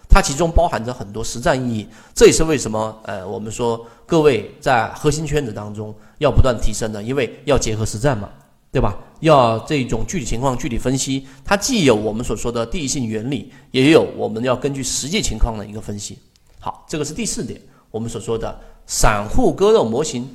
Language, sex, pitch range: Chinese, male, 110-130 Hz